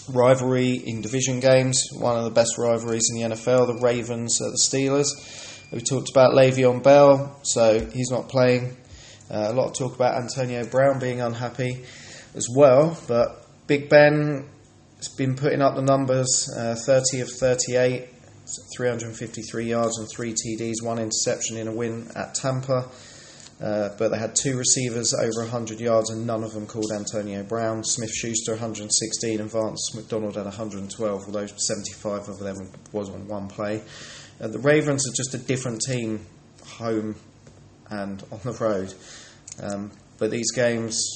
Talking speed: 160 wpm